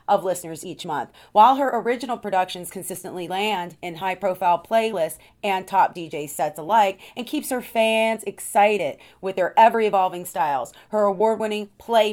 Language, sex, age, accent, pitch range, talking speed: English, female, 30-49, American, 180-220 Hz, 165 wpm